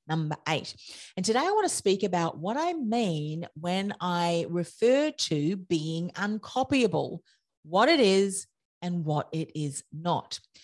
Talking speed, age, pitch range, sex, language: 145 wpm, 40-59, 160-205 Hz, female, English